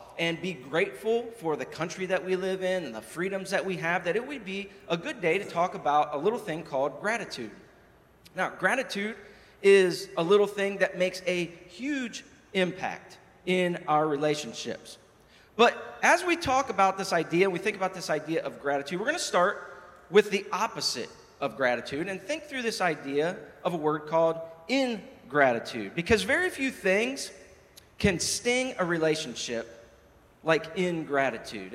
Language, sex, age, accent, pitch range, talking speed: English, male, 40-59, American, 175-240 Hz, 165 wpm